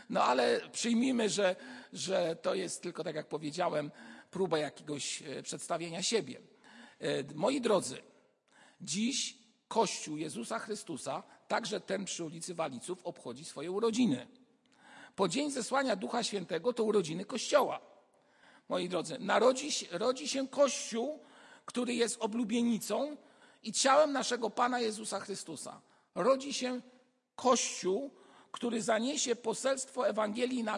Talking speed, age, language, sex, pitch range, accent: 115 wpm, 50-69, Polish, male, 190-250 Hz, native